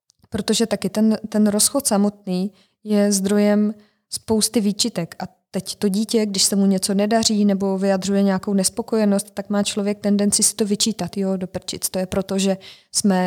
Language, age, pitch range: Czech, 20-39, 195-210 Hz